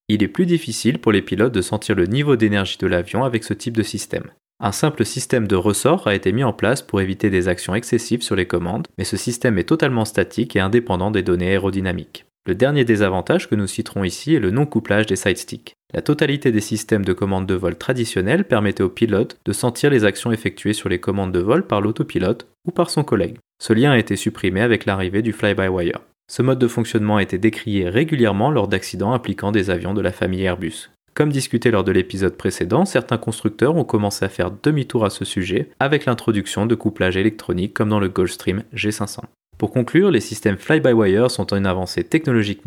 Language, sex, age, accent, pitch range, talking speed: French, male, 30-49, French, 95-120 Hz, 210 wpm